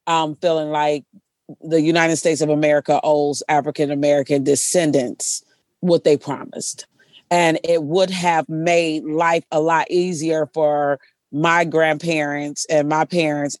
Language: English